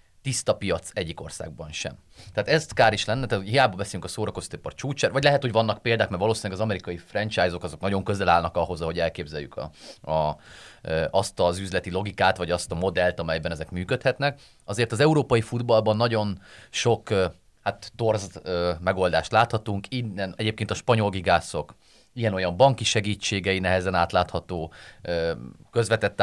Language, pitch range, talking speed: Hungarian, 90-115 Hz, 160 wpm